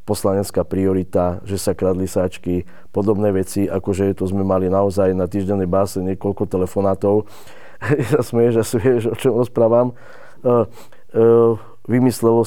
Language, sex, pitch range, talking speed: Slovak, male, 95-105 Hz, 130 wpm